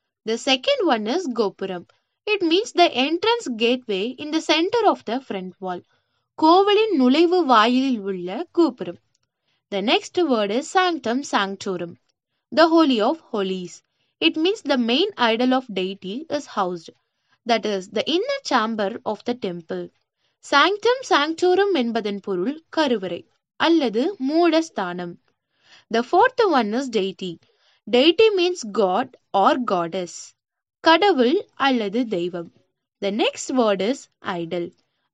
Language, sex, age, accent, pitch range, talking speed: Tamil, female, 20-39, native, 195-330 Hz, 135 wpm